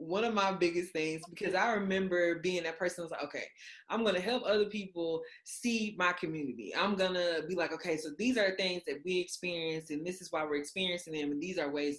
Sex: female